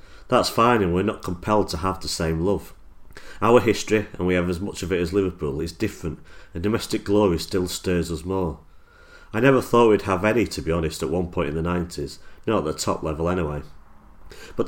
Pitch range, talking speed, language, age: 80-105 Hz, 215 wpm, English, 40-59